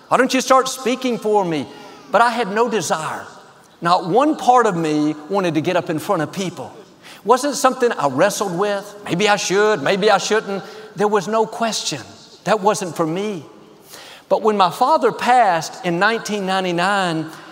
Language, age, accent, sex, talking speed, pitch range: English, 50-69, American, male, 175 wpm, 165-220 Hz